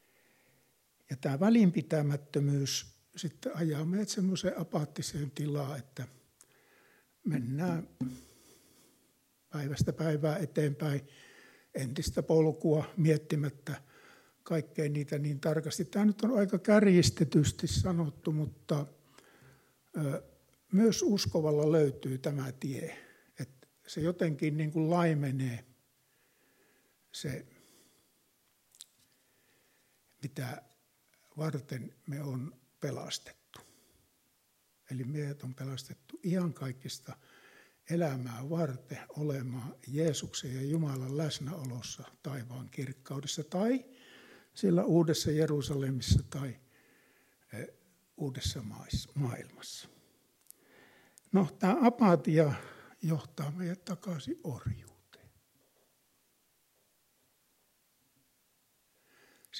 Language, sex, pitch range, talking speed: Finnish, male, 135-170 Hz, 70 wpm